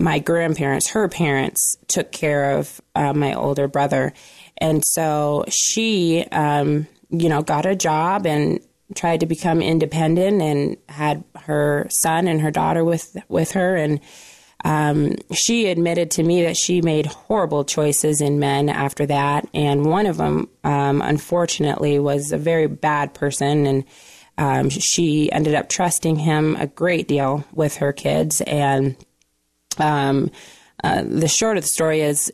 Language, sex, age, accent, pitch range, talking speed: English, female, 20-39, American, 145-165 Hz, 155 wpm